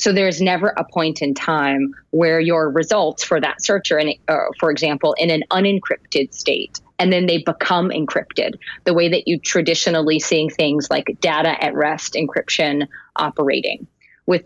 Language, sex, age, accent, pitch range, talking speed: English, female, 30-49, American, 150-180 Hz, 170 wpm